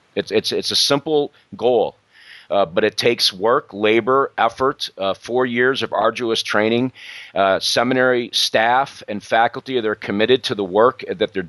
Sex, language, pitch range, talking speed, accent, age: male, English, 105-130 Hz, 160 wpm, American, 40-59